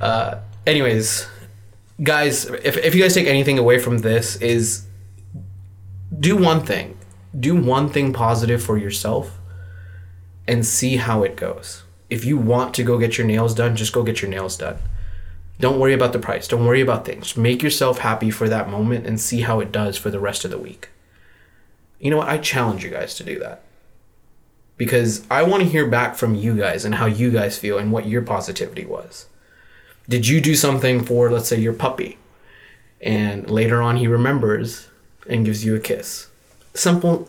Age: 20-39